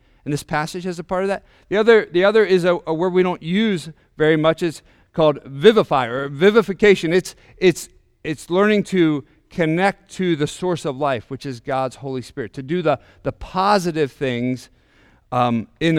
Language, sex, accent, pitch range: English, male, American, 130-185 Hz